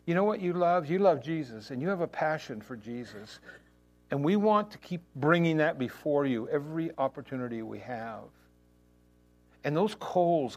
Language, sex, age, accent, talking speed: English, male, 60-79, American, 175 wpm